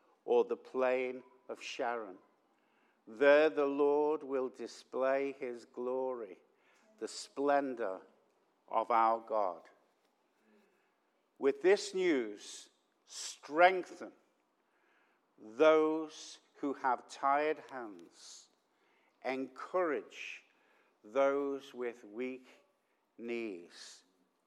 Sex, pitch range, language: male, 135-210 Hz, English